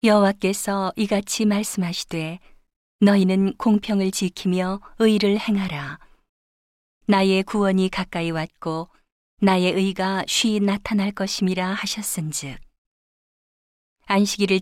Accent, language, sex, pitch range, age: native, Korean, female, 175-200 Hz, 40-59